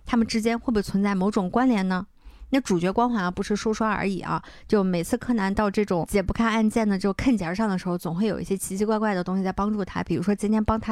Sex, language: female, Chinese